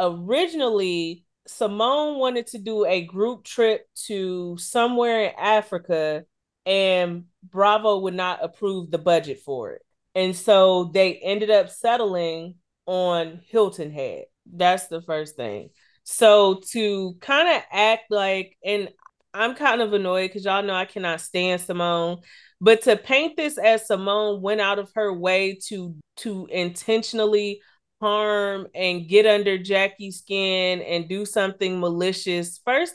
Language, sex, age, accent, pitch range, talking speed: English, female, 30-49, American, 185-255 Hz, 140 wpm